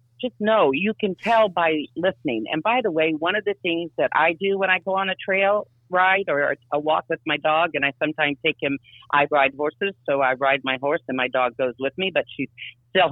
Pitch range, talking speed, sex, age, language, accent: 120-155 Hz, 245 wpm, female, 40-59, English, American